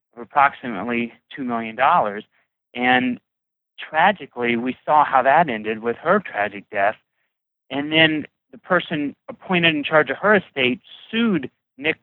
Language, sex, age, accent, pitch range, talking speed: English, male, 30-49, American, 120-165 Hz, 130 wpm